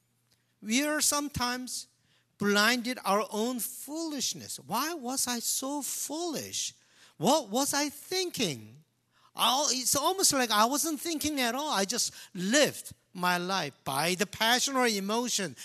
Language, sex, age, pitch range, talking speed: English, male, 50-69, 150-245 Hz, 130 wpm